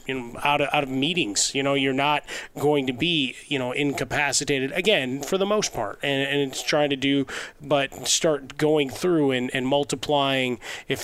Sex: male